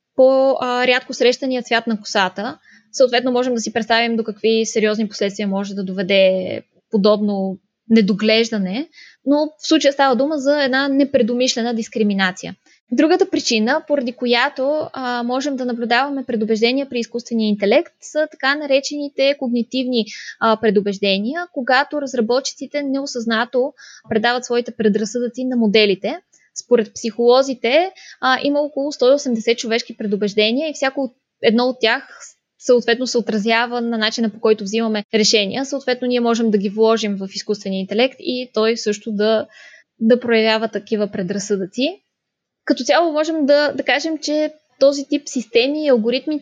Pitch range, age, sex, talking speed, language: 220-270 Hz, 20-39, female, 135 wpm, Bulgarian